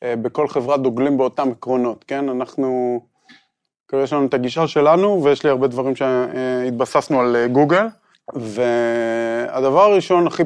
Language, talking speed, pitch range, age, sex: Hebrew, 130 wpm, 125-160 Hz, 20-39, male